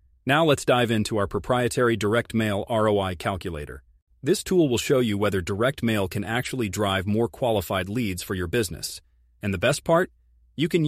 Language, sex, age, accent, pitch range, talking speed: English, male, 30-49, American, 90-125 Hz, 180 wpm